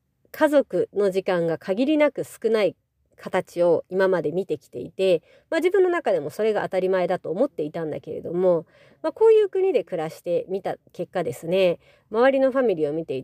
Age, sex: 40-59, female